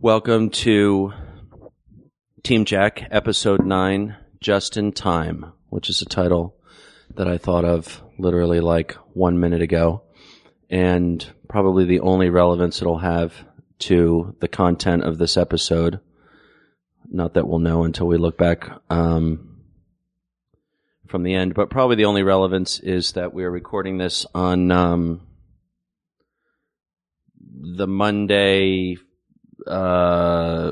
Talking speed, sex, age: 125 wpm, male, 30-49